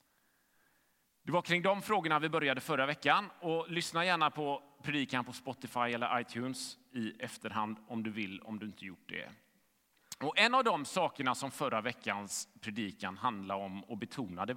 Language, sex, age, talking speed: Swedish, male, 30-49, 170 wpm